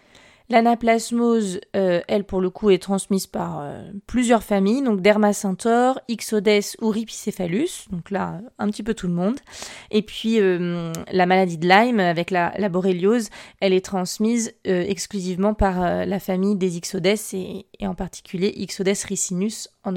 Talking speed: 160 wpm